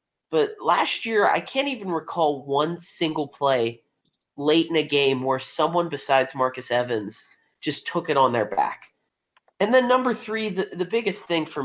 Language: English